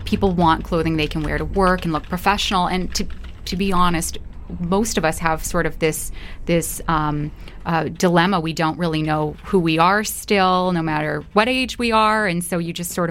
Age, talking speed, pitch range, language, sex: 20-39, 210 wpm, 160-190 Hz, English, female